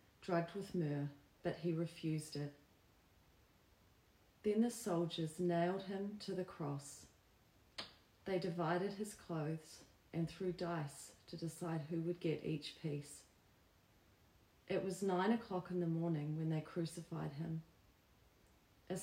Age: 40-59